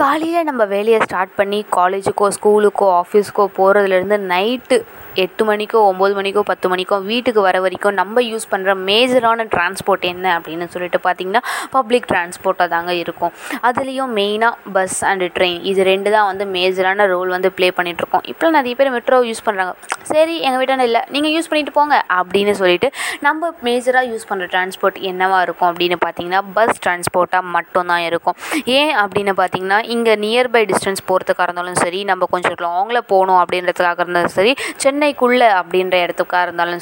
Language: Tamil